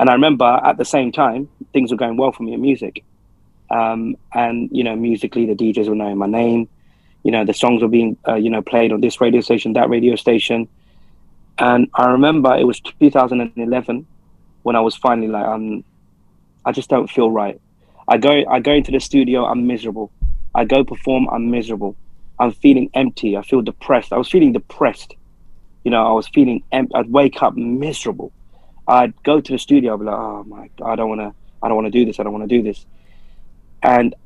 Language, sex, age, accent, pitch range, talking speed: English, male, 30-49, British, 105-125 Hz, 210 wpm